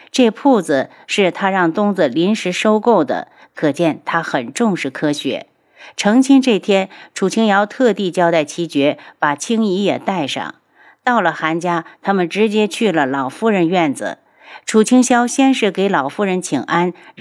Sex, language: female, Chinese